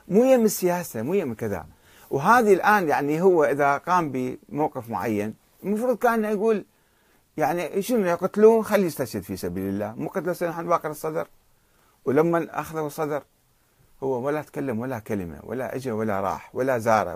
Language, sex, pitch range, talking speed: Arabic, male, 125-195 Hz, 155 wpm